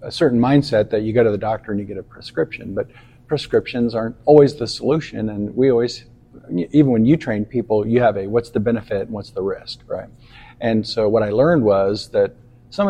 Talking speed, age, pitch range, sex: 220 wpm, 50-69, 110-125 Hz, male